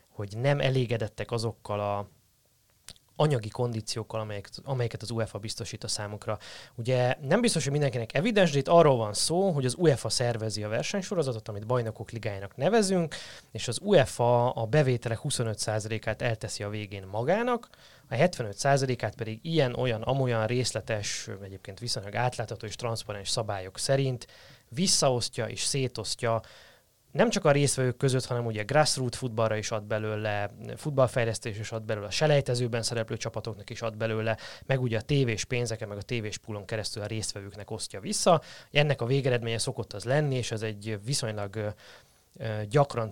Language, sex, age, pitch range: Hungarian, male, 20-39, 110-135 Hz